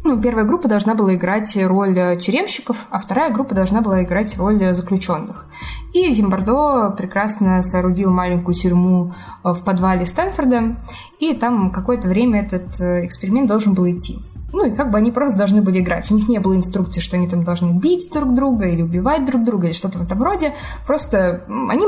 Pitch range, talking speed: 180-225 Hz, 180 wpm